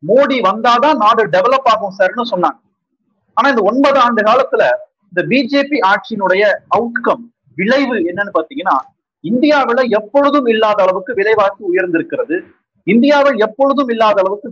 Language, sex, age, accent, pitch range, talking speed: Tamil, male, 30-49, native, 195-285 Hz, 120 wpm